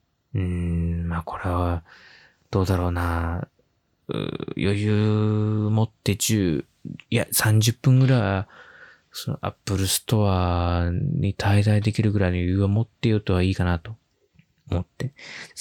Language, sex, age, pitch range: Japanese, male, 20-39, 95-125 Hz